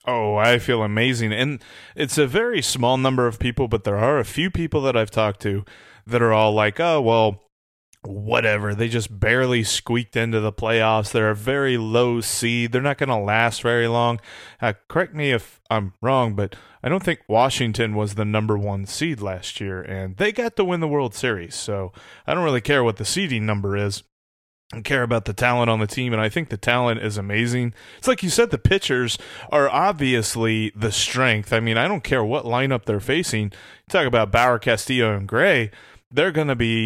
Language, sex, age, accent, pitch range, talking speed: English, male, 30-49, American, 110-140 Hz, 210 wpm